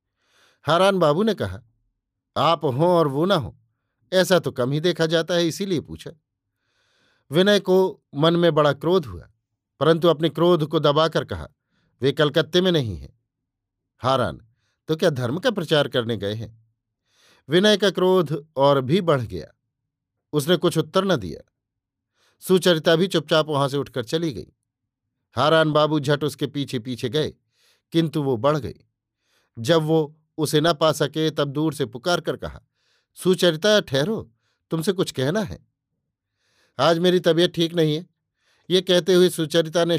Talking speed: 160 wpm